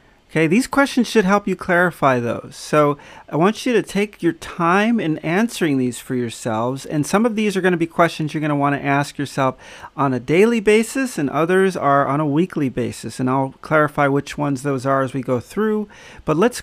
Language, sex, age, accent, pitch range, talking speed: English, male, 40-59, American, 135-185 Hz, 220 wpm